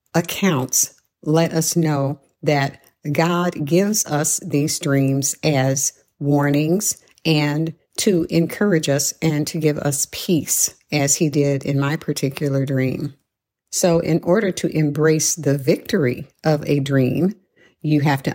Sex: female